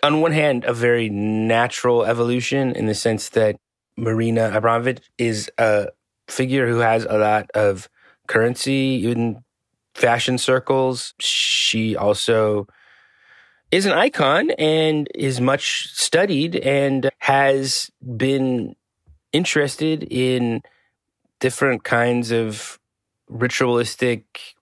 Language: English